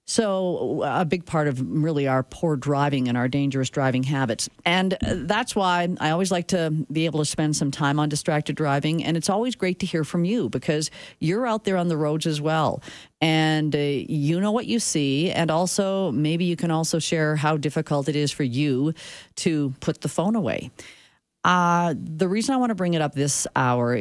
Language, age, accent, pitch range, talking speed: English, 40-59, American, 135-170 Hz, 205 wpm